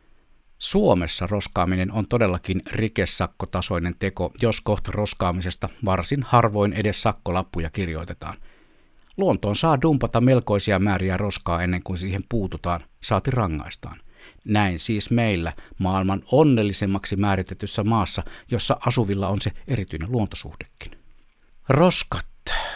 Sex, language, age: male, Finnish, 60-79